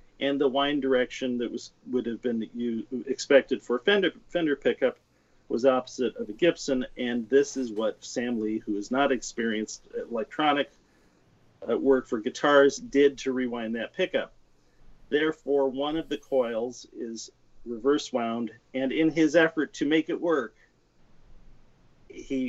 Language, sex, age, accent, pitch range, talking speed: English, male, 40-59, American, 120-150 Hz, 155 wpm